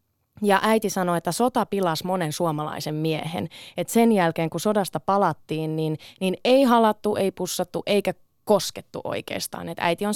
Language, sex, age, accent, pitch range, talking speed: Finnish, female, 20-39, native, 160-225 Hz, 160 wpm